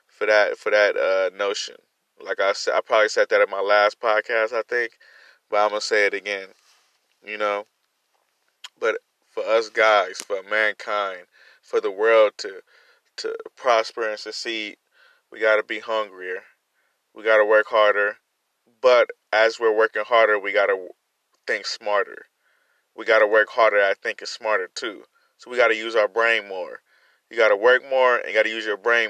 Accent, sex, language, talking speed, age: American, male, English, 175 wpm, 20-39